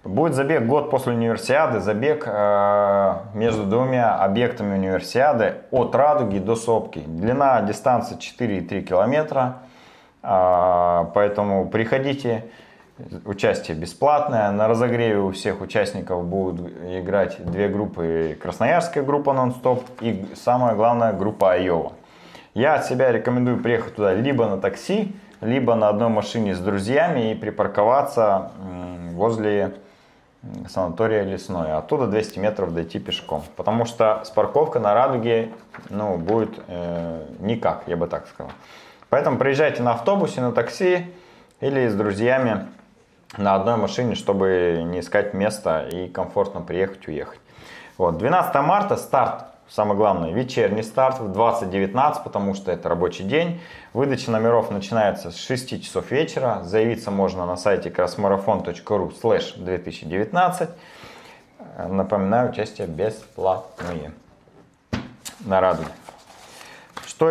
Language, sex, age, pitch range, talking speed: Russian, male, 30-49, 95-125 Hz, 120 wpm